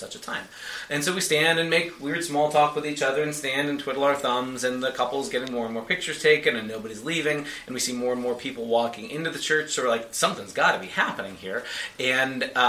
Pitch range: 115-155 Hz